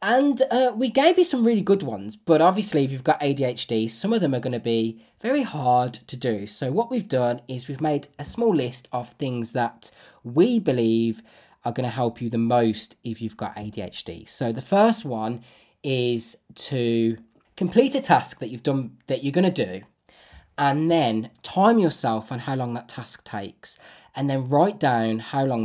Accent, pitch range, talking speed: British, 115-165 Hz, 200 wpm